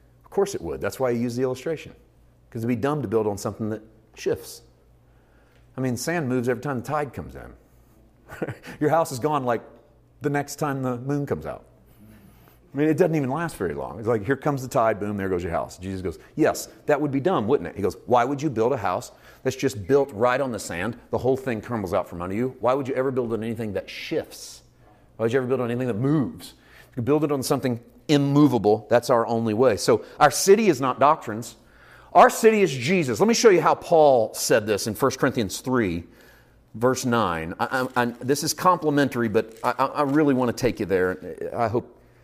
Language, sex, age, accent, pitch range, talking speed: English, male, 40-59, American, 115-150 Hz, 230 wpm